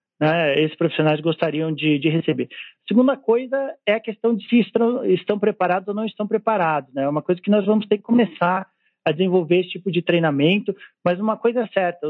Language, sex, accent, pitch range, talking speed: Portuguese, male, Brazilian, 150-195 Hz, 205 wpm